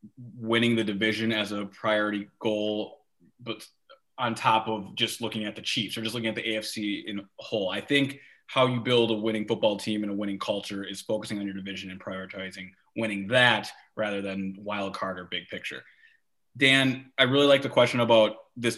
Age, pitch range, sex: 20-39, 105-125 Hz, male